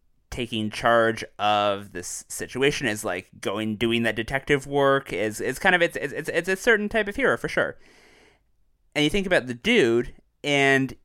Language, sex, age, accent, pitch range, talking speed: English, male, 20-39, American, 115-145 Hz, 180 wpm